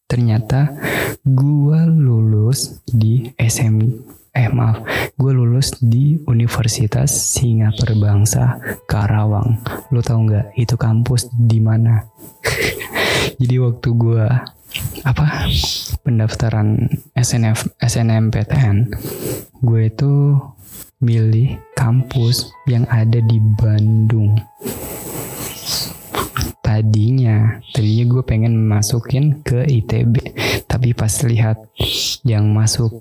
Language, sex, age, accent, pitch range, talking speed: Indonesian, male, 20-39, native, 115-130 Hz, 85 wpm